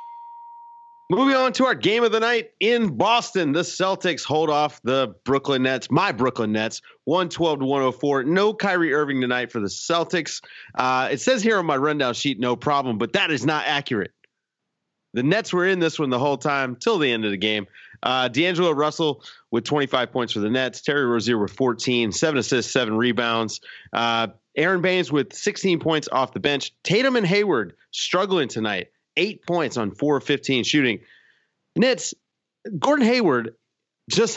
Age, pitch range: 30-49, 125-175 Hz